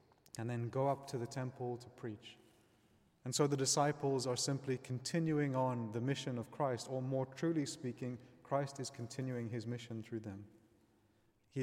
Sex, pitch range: male, 120-140 Hz